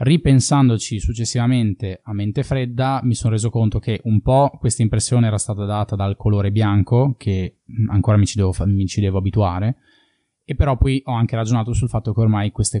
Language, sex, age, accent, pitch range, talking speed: Italian, male, 20-39, native, 100-115 Hz, 180 wpm